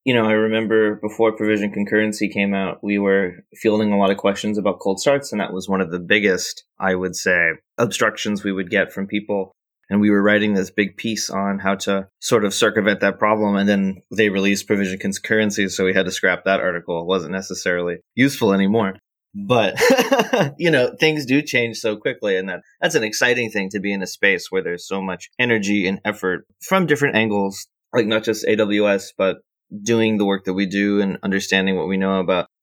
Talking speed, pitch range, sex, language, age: 210 wpm, 95-110 Hz, male, English, 20-39